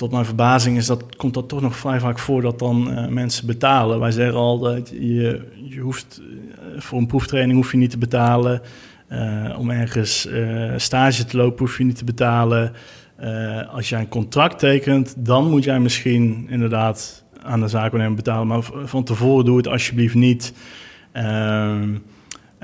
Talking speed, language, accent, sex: 180 wpm, English, Dutch, male